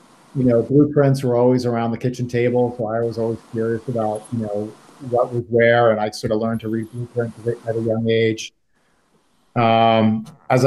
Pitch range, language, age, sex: 115-130 Hz, English, 50-69, male